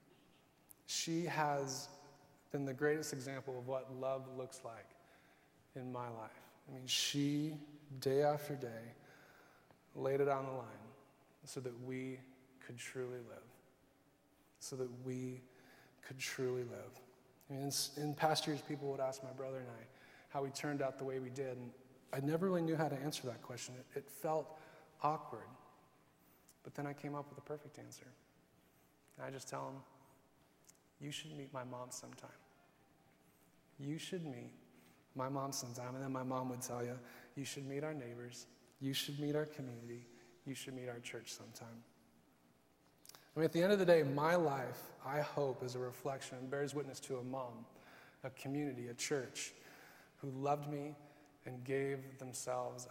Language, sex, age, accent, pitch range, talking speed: English, male, 20-39, American, 125-145 Hz, 170 wpm